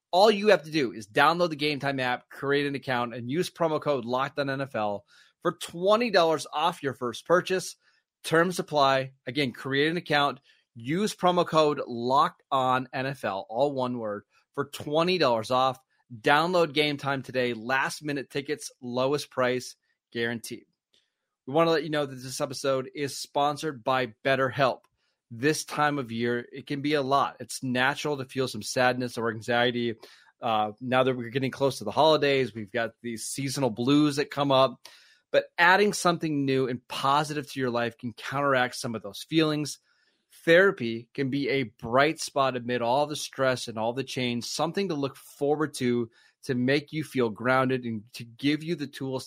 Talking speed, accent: 170 wpm, American